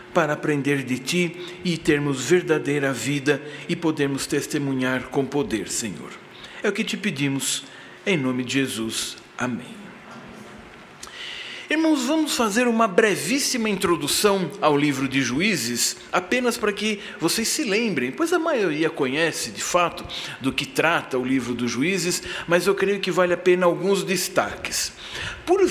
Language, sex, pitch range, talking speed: Portuguese, male, 170-255 Hz, 145 wpm